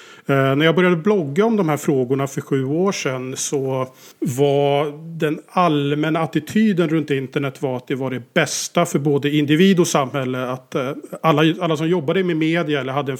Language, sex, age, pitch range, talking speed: Swedish, male, 40-59, 135-160 Hz, 180 wpm